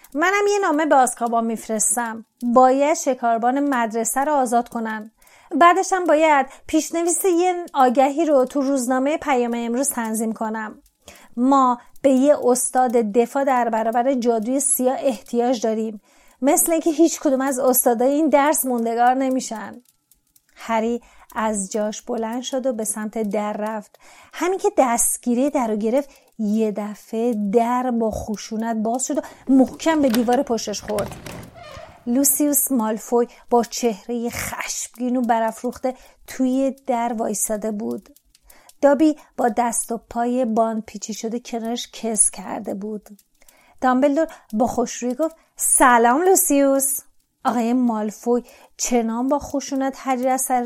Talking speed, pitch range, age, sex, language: 130 wpm, 230-275 Hz, 30-49, female, Persian